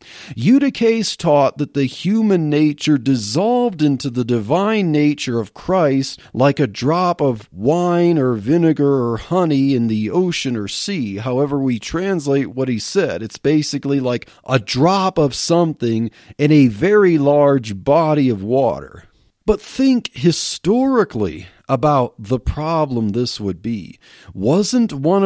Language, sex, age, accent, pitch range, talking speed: English, male, 40-59, American, 120-170 Hz, 140 wpm